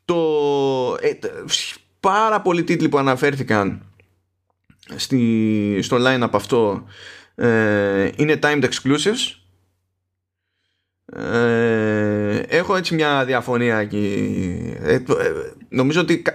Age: 20-39